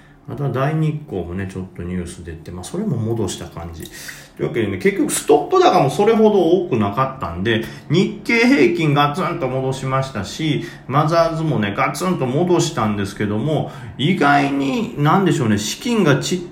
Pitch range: 100-155 Hz